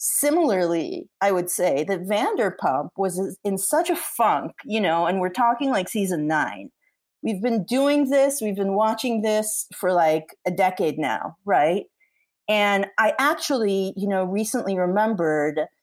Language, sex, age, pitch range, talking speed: English, female, 40-59, 170-215 Hz, 150 wpm